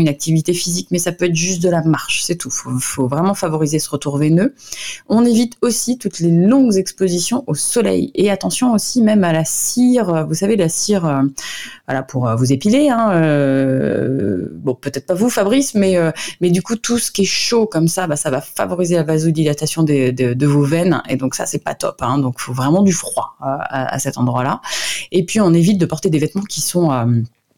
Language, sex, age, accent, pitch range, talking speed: French, female, 30-49, French, 145-185 Hz, 230 wpm